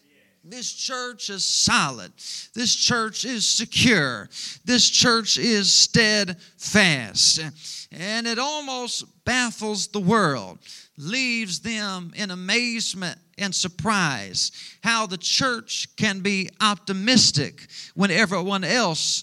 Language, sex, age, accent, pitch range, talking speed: English, male, 40-59, American, 170-225 Hz, 105 wpm